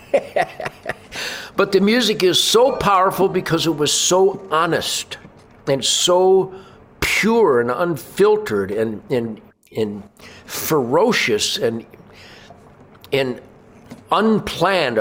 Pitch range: 125-165 Hz